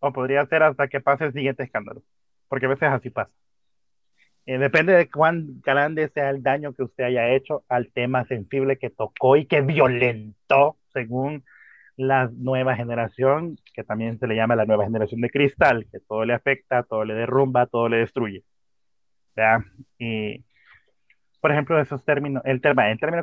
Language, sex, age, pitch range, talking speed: Spanish, male, 30-49, 120-145 Hz, 175 wpm